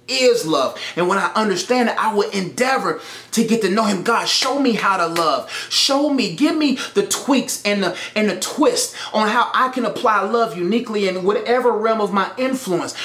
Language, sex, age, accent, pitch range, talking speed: English, male, 30-49, American, 190-265 Hz, 205 wpm